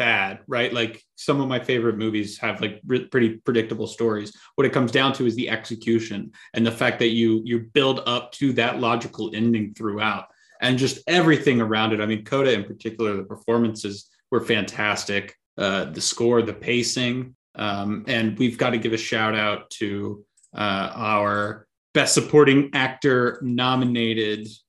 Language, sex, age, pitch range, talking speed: English, male, 30-49, 110-130 Hz, 170 wpm